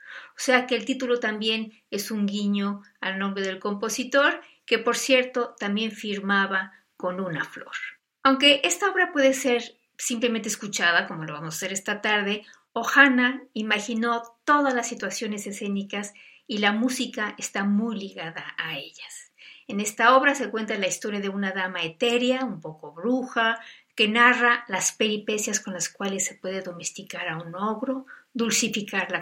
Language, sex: Spanish, female